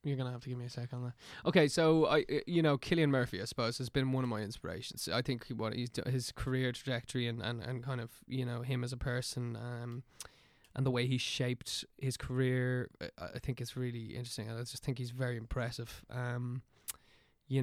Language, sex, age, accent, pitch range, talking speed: English, male, 20-39, Irish, 120-135 Hz, 230 wpm